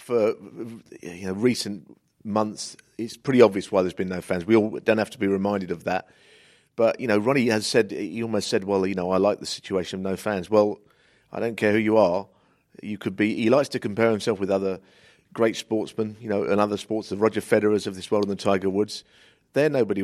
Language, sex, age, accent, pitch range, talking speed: English, male, 50-69, British, 100-130 Hz, 225 wpm